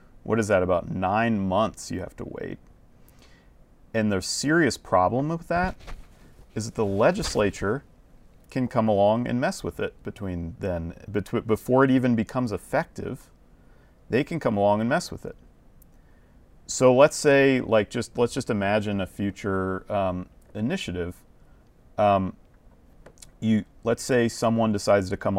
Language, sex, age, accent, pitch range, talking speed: English, male, 40-59, American, 95-120 Hz, 145 wpm